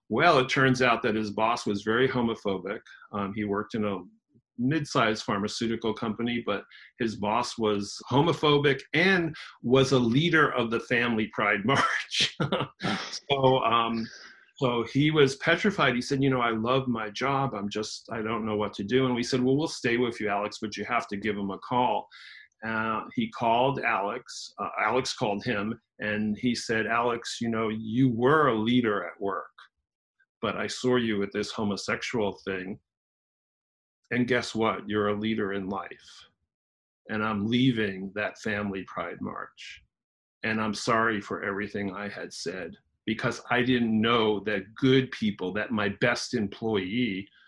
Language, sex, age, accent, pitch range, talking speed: English, male, 40-59, American, 105-125 Hz, 170 wpm